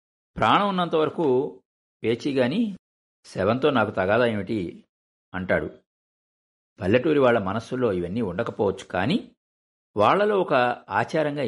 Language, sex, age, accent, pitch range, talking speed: Telugu, male, 60-79, native, 90-130 Hz, 95 wpm